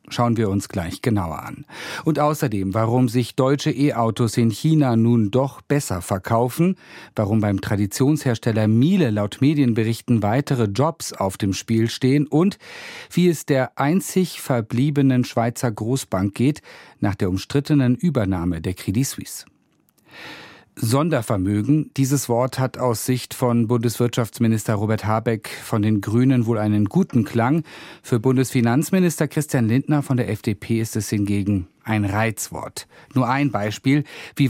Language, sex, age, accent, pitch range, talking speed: German, male, 40-59, German, 110-145 Hz, 135 wpm